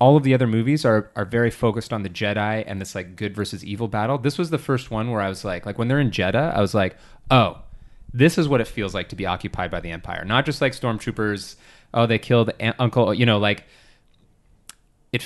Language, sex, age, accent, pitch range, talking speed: English, male, 30-49, American, 95-125 Hz, 245 wpm